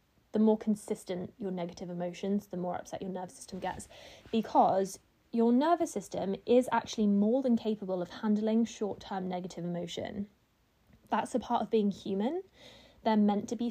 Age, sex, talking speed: 20-39, female, 160 wpm